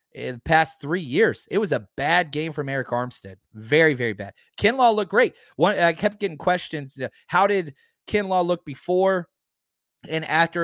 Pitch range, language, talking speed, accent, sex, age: 130-190 Hz, English, 175 wpm, American, male, 30-49